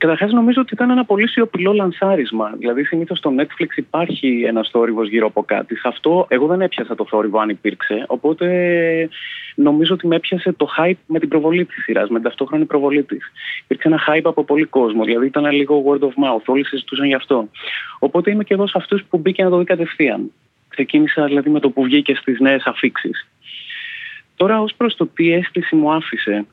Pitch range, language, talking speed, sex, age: 125-170 Hz, Greek, 200 wpm, male, 30-49